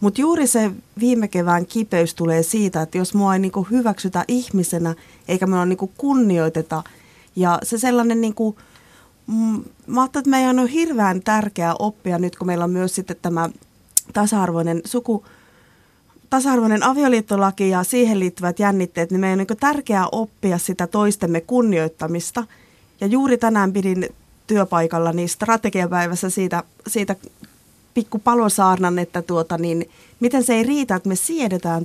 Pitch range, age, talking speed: 175-225 Hz, 30-49, 140 wpm